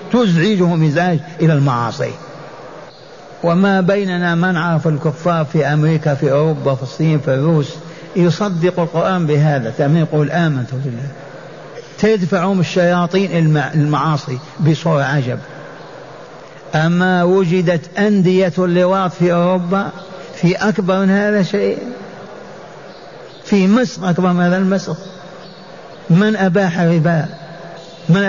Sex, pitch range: male, 155-190 Hz